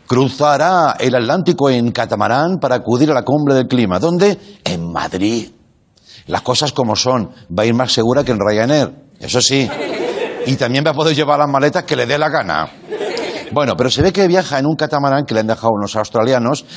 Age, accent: 60-79, Spanish